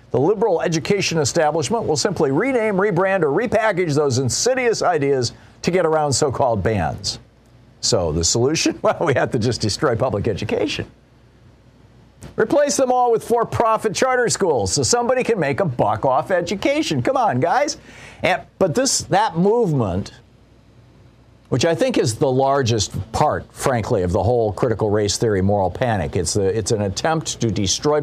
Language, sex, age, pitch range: English, male, 50-69, 120-185 Hz